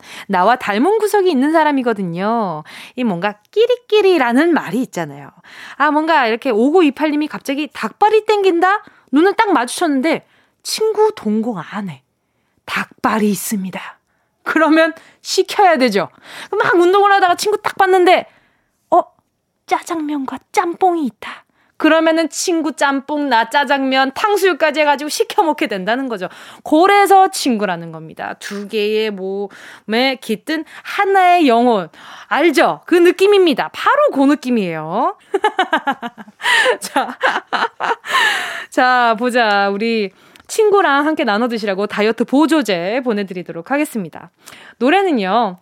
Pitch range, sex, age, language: 225-360 Hz, female, 20-39, Korean